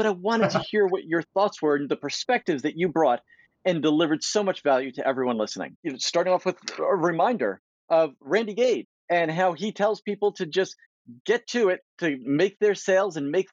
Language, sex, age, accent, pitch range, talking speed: English, male, 40-59, American, 160-205 Hz, 210 wpm